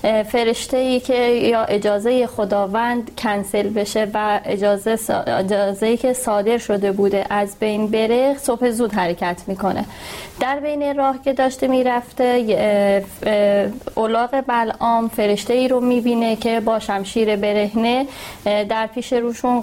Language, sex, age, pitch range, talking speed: Persian, female, 30-49, 210-245 Hz, 130 wpm